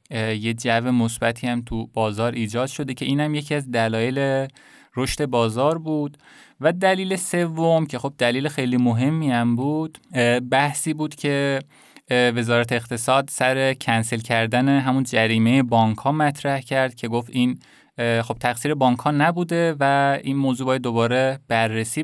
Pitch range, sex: 120-150 Hz, male